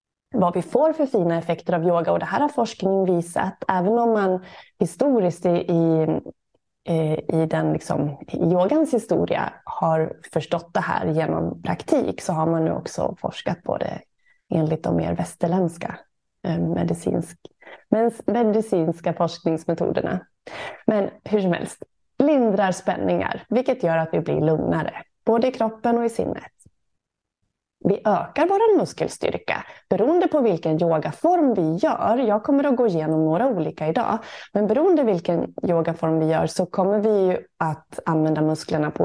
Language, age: Swedish, 20-39